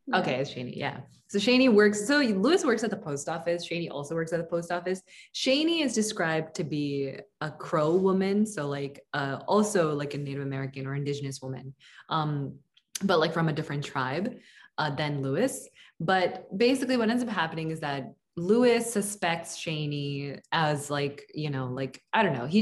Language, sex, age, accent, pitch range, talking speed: English, female, 20-39, American, 150-210 Hz, 185 wpm